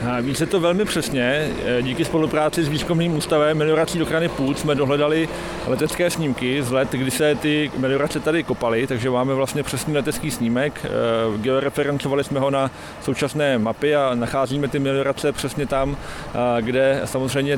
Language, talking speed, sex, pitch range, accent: Czech, 150 wpm, male, 130-150 Hz, native